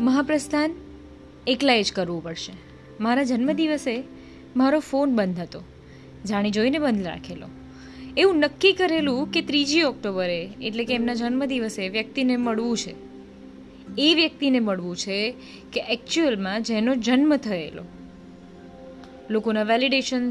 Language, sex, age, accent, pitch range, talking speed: Gujarati, female, 20-39, native, 175-270 Hz, 115 wpm